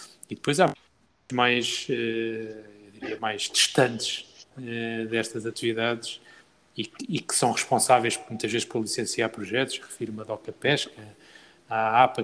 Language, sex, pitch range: Portuguese, male, 115-130 Hz